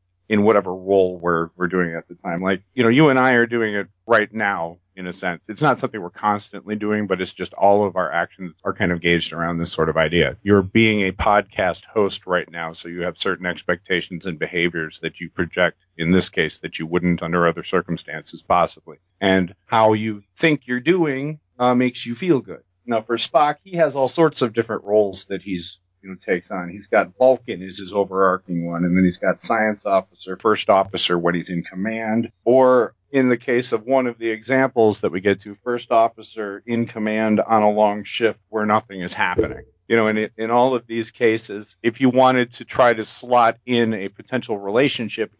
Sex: male